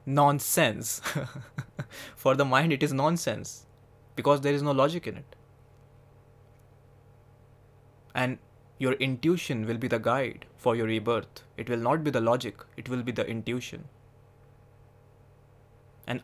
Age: 20-39